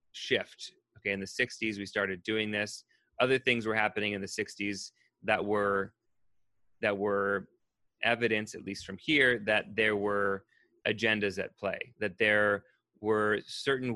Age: 30-49